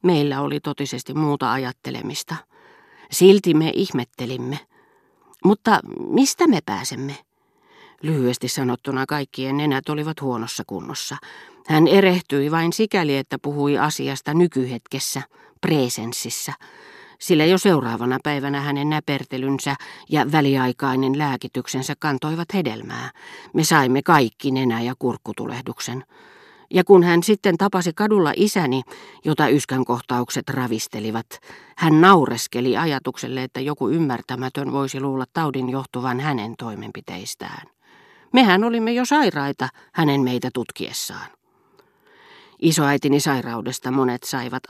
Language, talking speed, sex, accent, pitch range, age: Finnish, 105 wpm, female, native, 130-170 Hz, 40-59